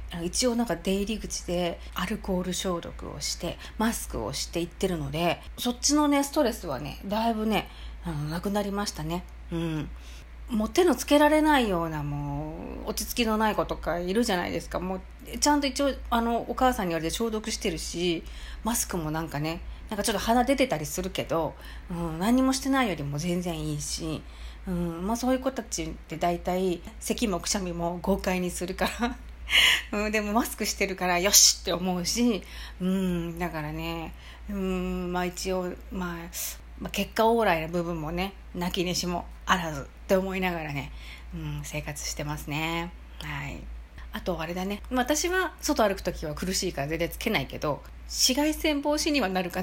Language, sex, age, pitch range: Japanese, female, 40-59, 170-235 Hz